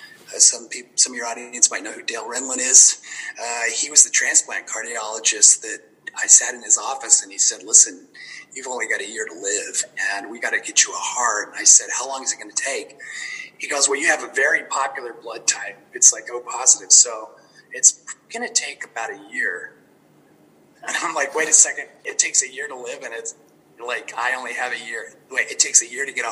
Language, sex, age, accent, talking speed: English, male, 30-49, American, 235 wpm